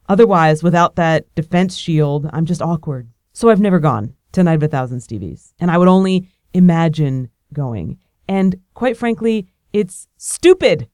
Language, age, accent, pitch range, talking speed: English, 30-49, American, 175-225 Hz, 160 wpm